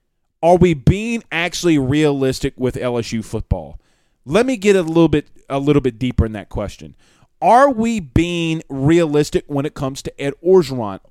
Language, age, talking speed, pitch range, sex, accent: English, 30-49, 165 wpm, 130-200 Hz, male, American